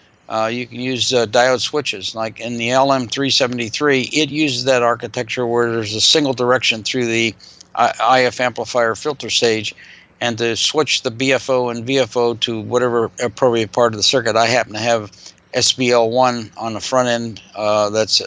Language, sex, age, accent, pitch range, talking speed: English, male, 50-69, American, 115-130 Hz, 170 wpm